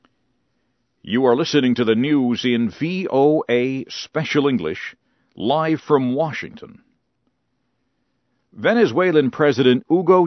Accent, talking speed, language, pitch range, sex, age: American, 95 wpm, English, 120-160 Hz, male, 50-69